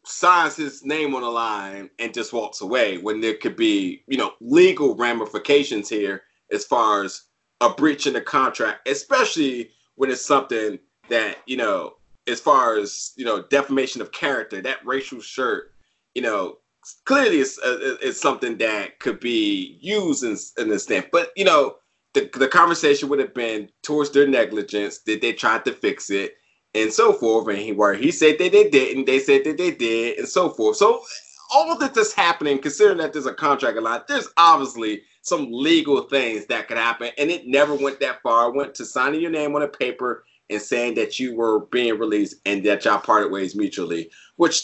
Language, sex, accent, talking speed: English, male, American, 195 wpm